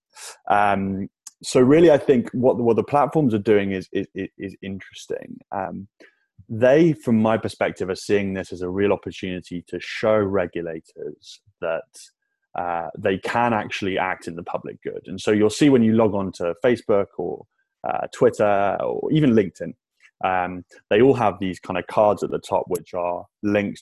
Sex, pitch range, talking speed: male, 90-115 Hz, 180 wpm